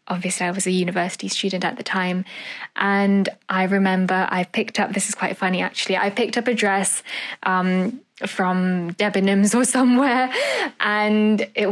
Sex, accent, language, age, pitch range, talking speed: female, British, English, 10-29, 195-235 Hz, 165 wpm